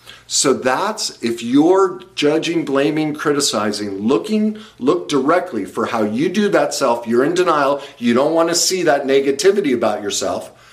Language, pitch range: English, 115-150 Hz